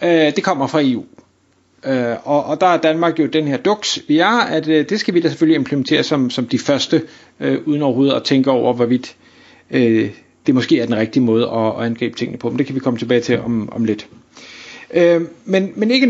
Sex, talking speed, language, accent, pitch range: male, 190 wpm, Danish, native, 130-165 Hz